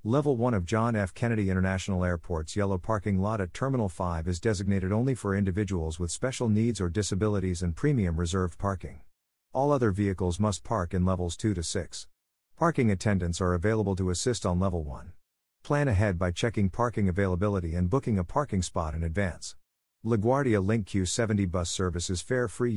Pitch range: 90-110 Hz